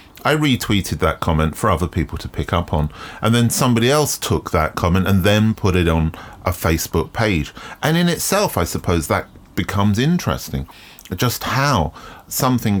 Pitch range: 80-110 Hz